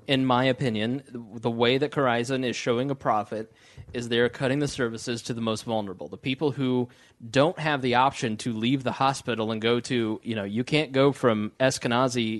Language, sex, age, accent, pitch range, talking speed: English, male, 30-49, American, 115-135 Hz, 200 wpm